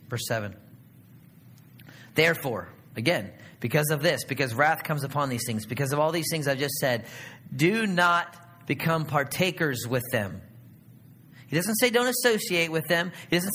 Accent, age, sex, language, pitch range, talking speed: American, 30-49, male, English, 145-240 Hz, 160 wpm